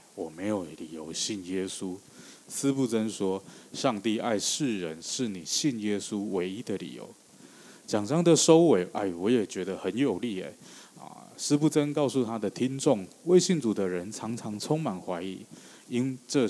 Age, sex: 20-39, male